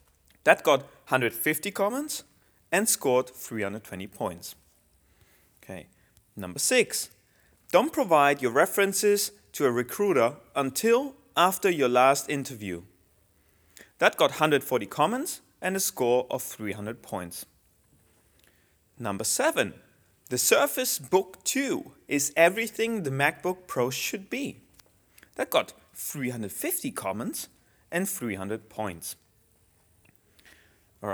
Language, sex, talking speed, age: English, male, 105 wpm, 30-49